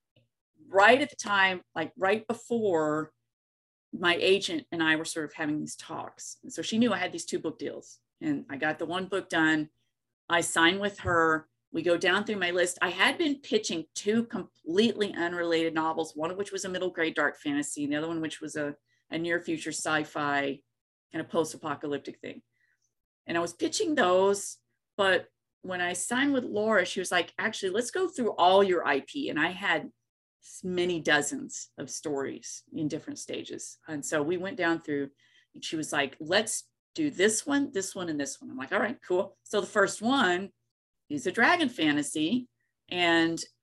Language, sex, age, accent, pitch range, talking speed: English, female, 40-59, American, 155-215 Hz, 190 wpm